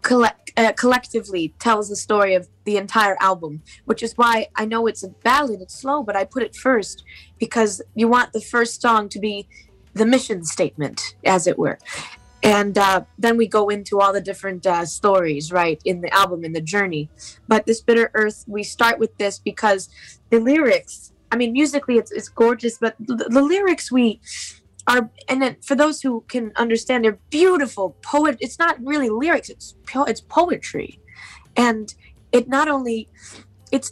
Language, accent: French, American